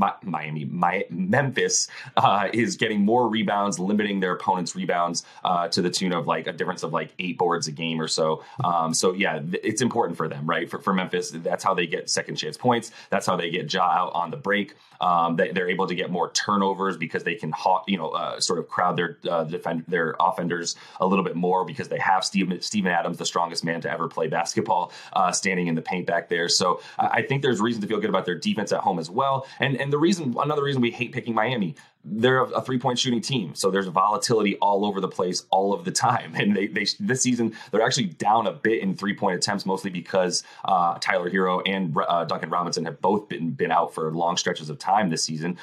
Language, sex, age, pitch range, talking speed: English, male, 30-49, 85-105 Hz, 235 wpm